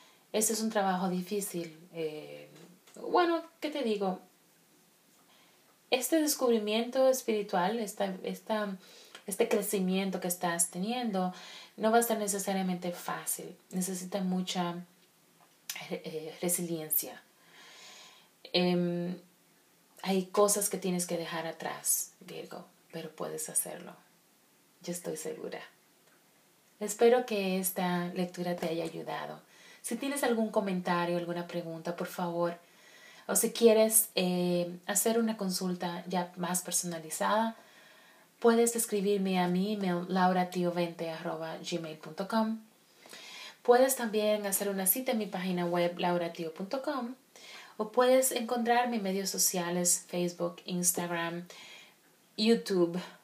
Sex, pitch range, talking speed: female, 175-220 Hz, 105 wpm